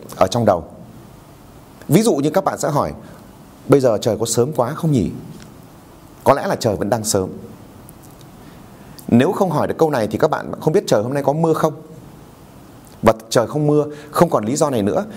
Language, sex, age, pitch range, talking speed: Vietnamese, male, 30-49, 115-150 Hz, 205 wpm